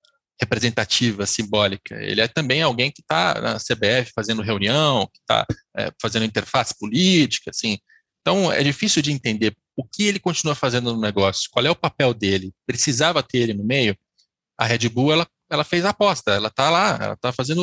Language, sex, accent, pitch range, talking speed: Portuguese, male, Brazilian, 115-165 Hz, 185 wpm